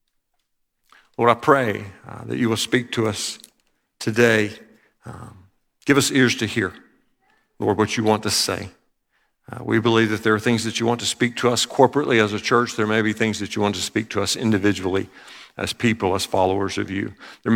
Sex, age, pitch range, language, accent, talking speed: male, 50-69, 100-120 Hz, English, American, 205 wpm